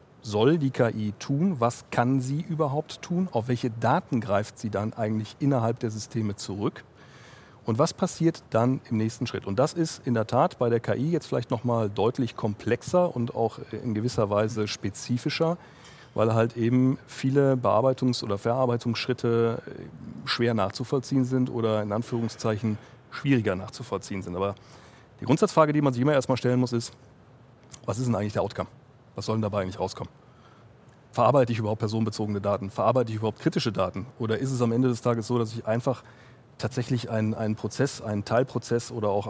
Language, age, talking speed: German, 40-59, 175 wpm